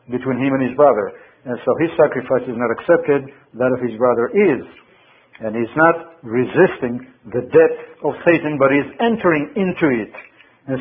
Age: 50-69